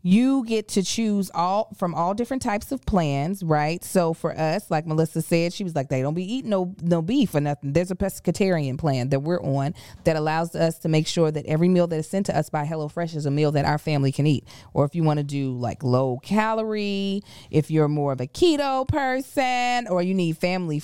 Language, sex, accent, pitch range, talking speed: English, female, American, 150-190 Hz, 235 wpm